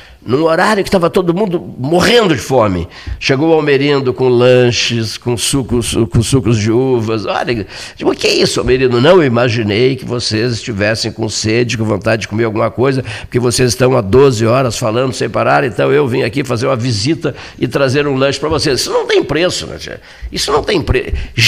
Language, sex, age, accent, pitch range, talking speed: Portuguese, male, 60-79, Brazilian, 110-145 Hz, 205 wpm